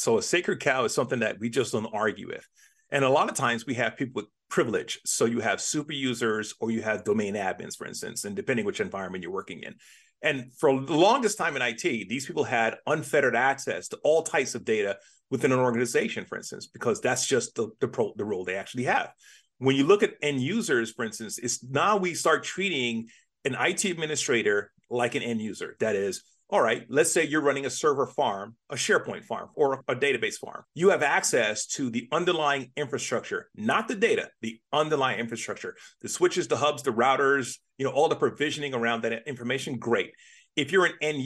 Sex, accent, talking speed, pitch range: male, American, 210 wpm, 120-165 Hz